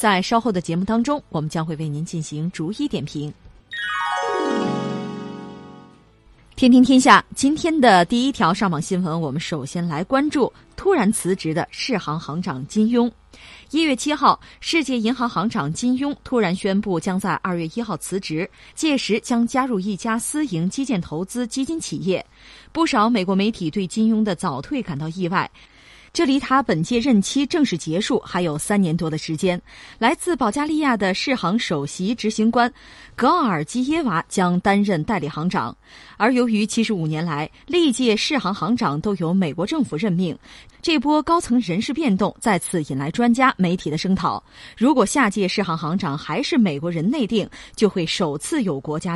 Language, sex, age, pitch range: Chinese, female, 20-39, 175-250 Hz